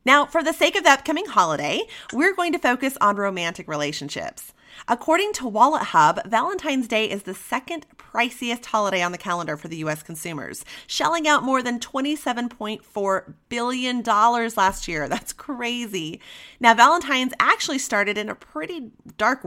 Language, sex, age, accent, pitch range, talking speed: English, female, 30-49, American, 180-255 Hz, 155 wpm